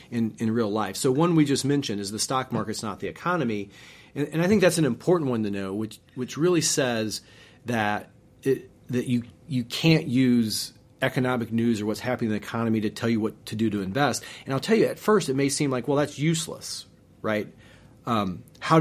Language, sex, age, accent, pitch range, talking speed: English, male, 40-59, American, 110-135 Hz, 220 wpm